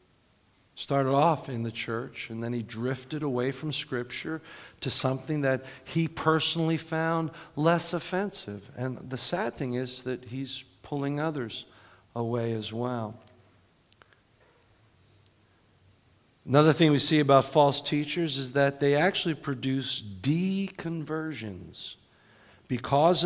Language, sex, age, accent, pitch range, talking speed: English, male, 50-69, American, 115-150 Hz, 120 wpm